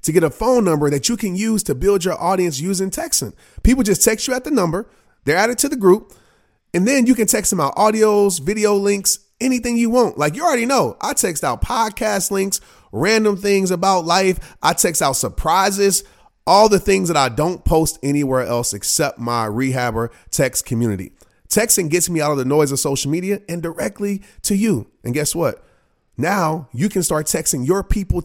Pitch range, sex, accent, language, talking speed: 145-205 Hz, male, American, English, 200 wpm